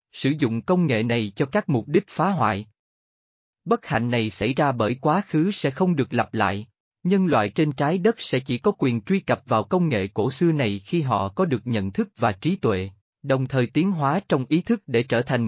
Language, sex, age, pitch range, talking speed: Vietnamese, male, 20-39, 115-160 Hz, 235 wpm